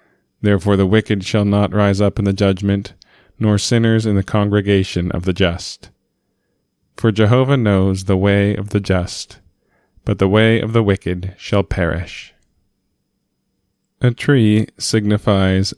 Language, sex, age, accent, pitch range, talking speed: English, male, 20-39, American, 95-110 Hz, 140 wpm